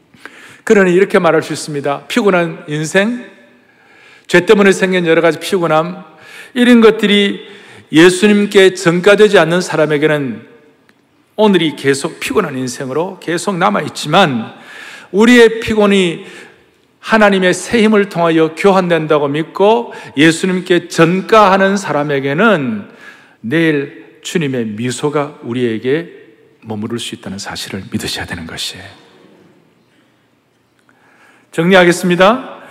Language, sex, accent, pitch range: Korean, male, native, 160-220 Hz